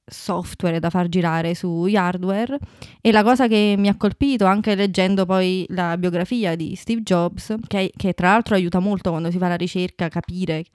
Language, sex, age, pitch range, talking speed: Italian, female, 20-39, 180-210 Hz, 190 wpm